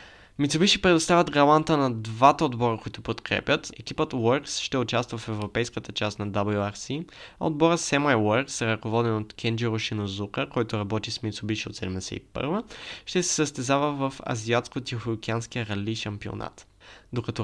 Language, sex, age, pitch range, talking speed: Bulgarian, male, 20-39, 110-145 Hz, 140 wpm